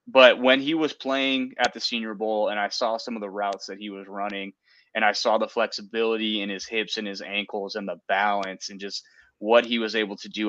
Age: 20-39